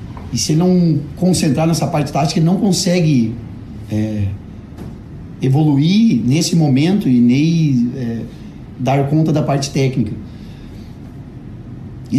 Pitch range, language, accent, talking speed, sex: 120-140 Hz, Portuguese, Brazilian, 110 wpm, male